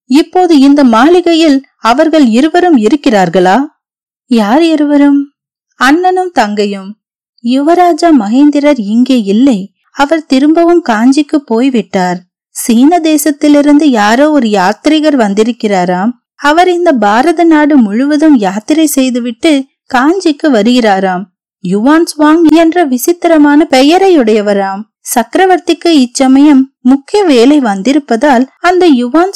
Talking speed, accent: 90 wpm, native